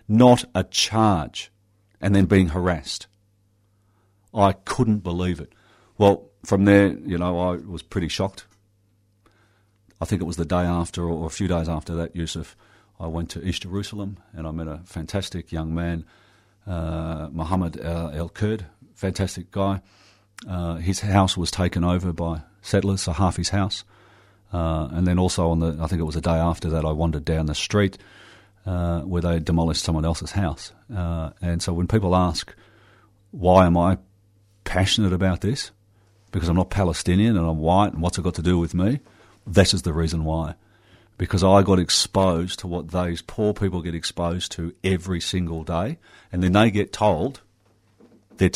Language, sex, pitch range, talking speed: English, male, 85-100 Hz, 175 wpm